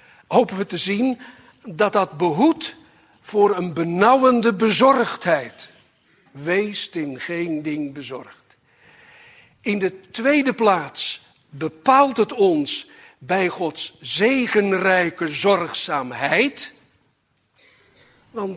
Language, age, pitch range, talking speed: Dutch, 60-79, 150-230 Hz, 90 wpm